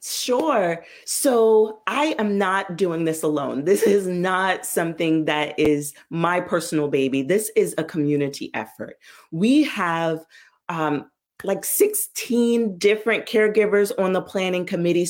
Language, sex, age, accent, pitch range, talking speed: English, female, 30-49, American, 155-210 Hz, 130 wpm